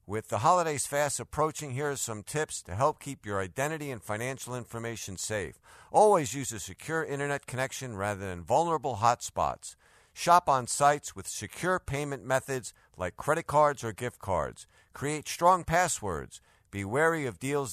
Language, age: English, 50-69